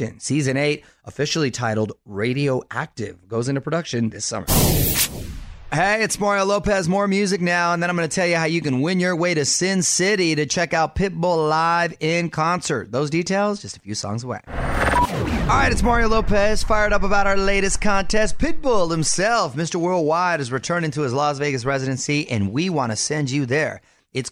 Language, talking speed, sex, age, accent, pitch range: English, 190 wpm, male, 30-49, American, 115-180 Hz